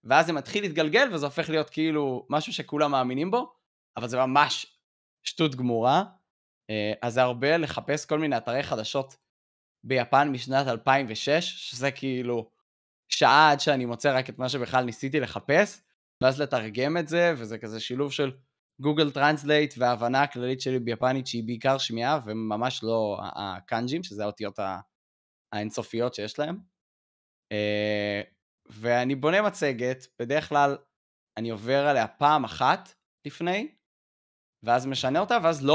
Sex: male